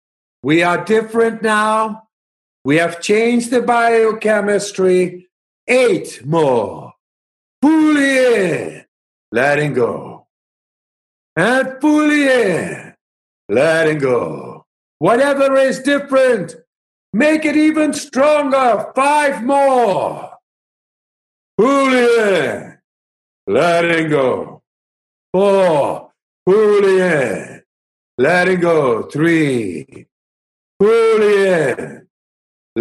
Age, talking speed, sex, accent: 60-79, 85 wpm, male, American